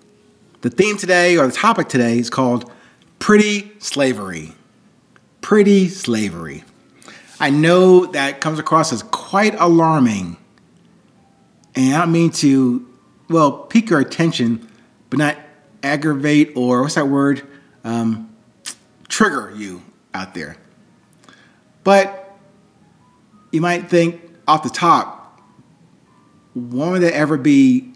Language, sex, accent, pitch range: English, male, American, 125-165 Hz